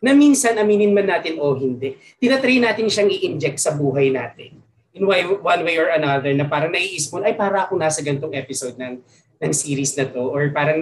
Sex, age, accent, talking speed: male, 20-39, native, 195 wpm